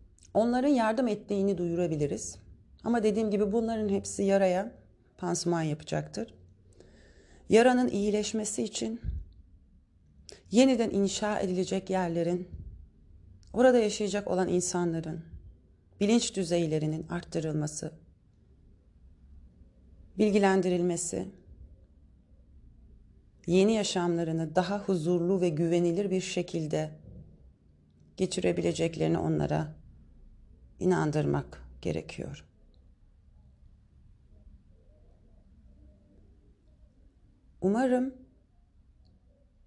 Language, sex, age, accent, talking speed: Turkish, female, 40-59, native, 60 wpm